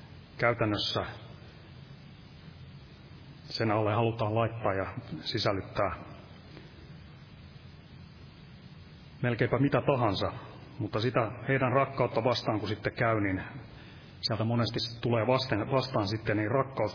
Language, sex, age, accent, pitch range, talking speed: Finnish, male, 30-49, native, 105-135 Hz, 90 wpm